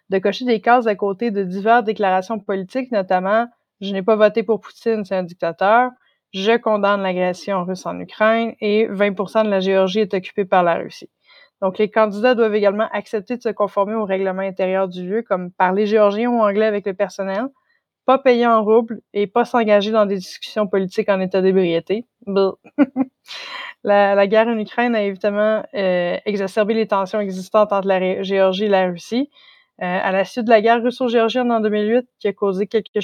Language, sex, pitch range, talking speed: French, female, 195-230 Hz, 200 wpm